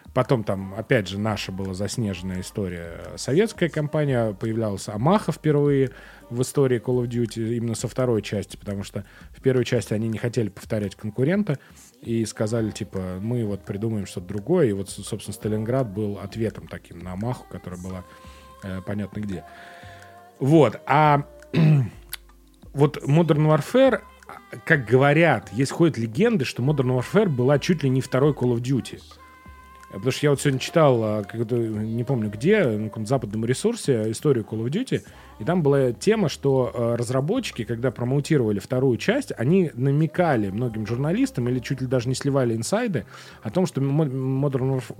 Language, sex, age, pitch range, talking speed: Russian, male, 30-49, 105-140 Hz, 155 wpm